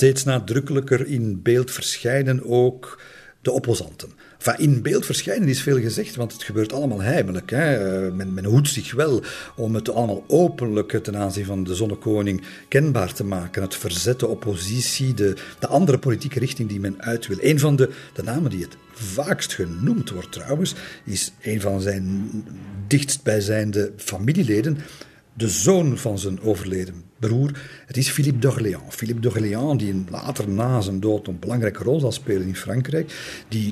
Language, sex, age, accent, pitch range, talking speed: Dutch, male, 50-69, Belgian, 100-130 Hz, 165 wpm